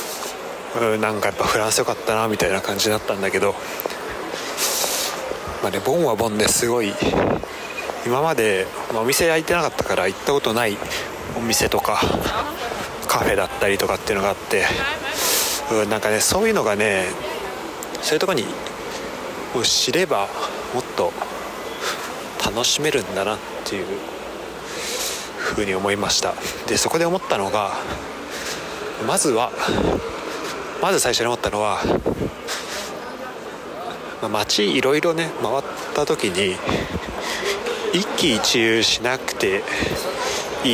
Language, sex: Japanese, male